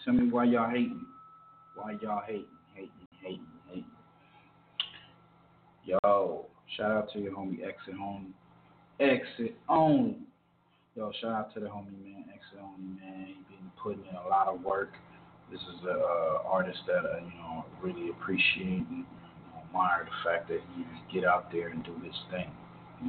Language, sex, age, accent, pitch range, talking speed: English, male, 30-49, American, 90-125 Hz, 175 wpm